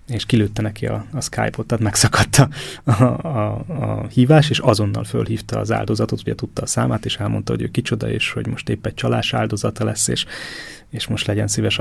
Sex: male